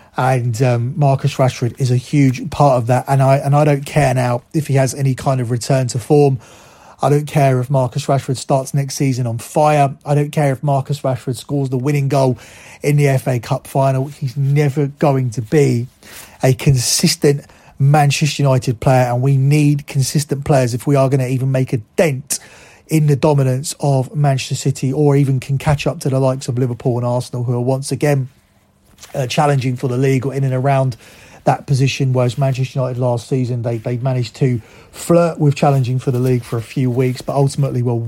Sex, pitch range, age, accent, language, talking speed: male, 125-145 Hz, 30-49, British, English, 205 wpm